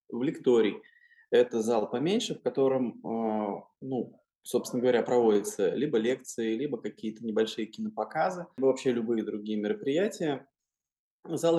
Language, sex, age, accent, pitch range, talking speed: Russian, male, 20-39, native, 110-145 Hz, 125 wpm